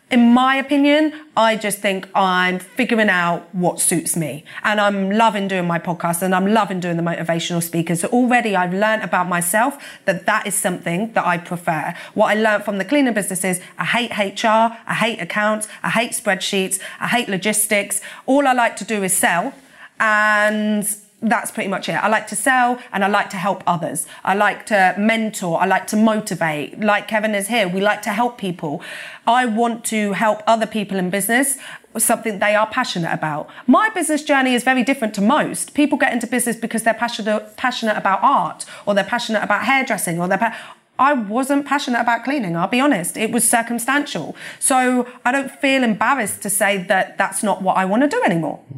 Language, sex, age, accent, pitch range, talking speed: English, female, 30-49, British, 195-240 Hz, 200 wpm